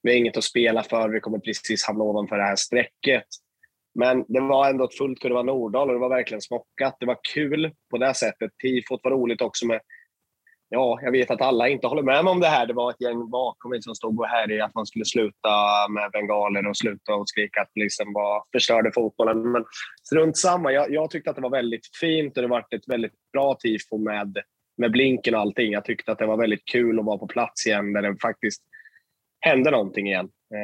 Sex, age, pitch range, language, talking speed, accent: male, 20-39, 105-130 Hz, Swedish, 225 wpm, native